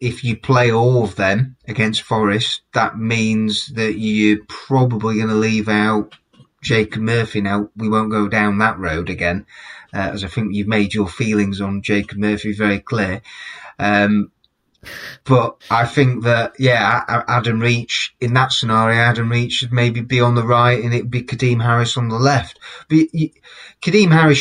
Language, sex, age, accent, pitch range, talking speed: English, male, 30-49, British, 110-130 Hz, 175 wpm